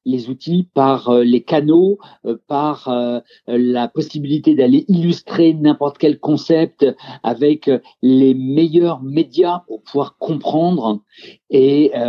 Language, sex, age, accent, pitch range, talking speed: French, male, 50-69, French, 130-175 Hz, 105 wpm